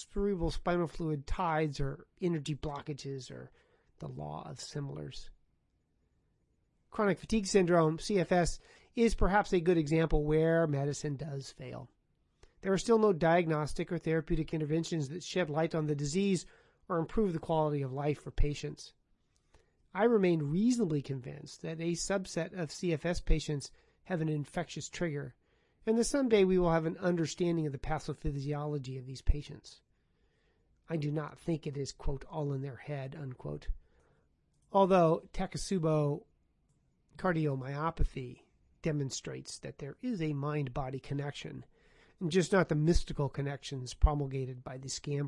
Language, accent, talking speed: English, American, 140 wpm